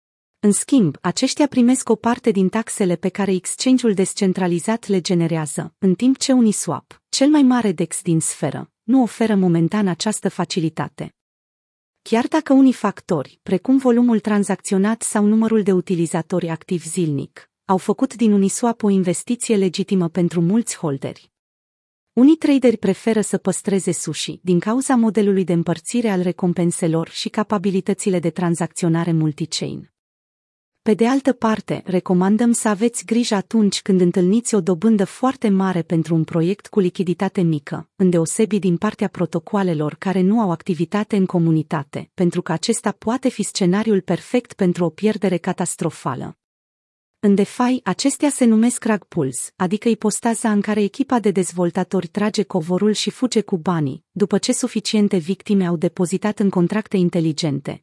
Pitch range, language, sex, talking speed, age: 175-220 Hz, Romanian, female, 145 wpm, 30-49